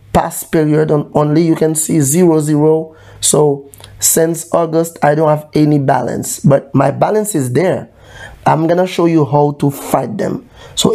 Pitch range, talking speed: 140-165 Hz, 170 wpm